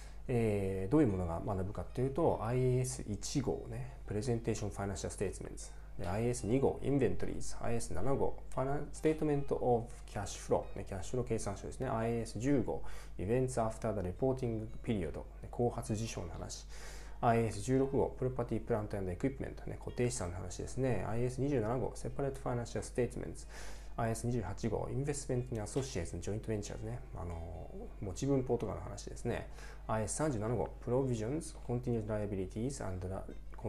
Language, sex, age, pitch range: Japanese, male, 20-39, 100-130 Hz